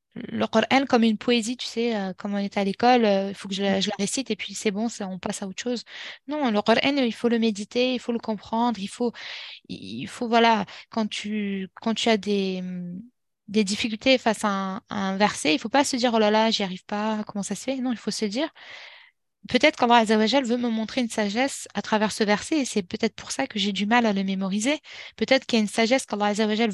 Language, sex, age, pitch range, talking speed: French, female, 20-39, 205-245 Hz, 255 wpm